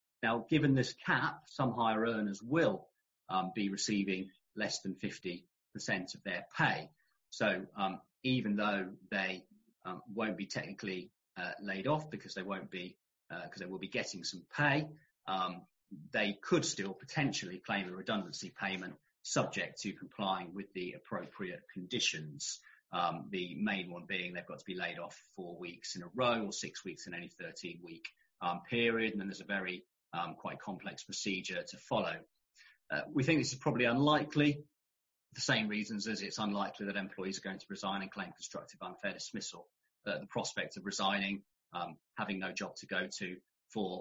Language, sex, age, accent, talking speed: English, male, 40-59, British, 175 wpm